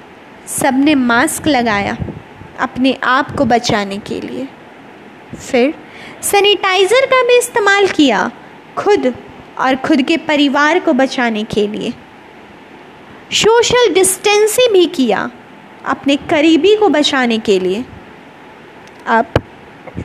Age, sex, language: 20-39, female, Hindi